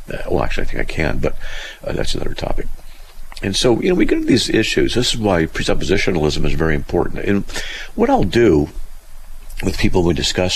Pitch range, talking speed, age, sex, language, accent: 75-95 Hz, 195 wpm, 50-69, male, English, American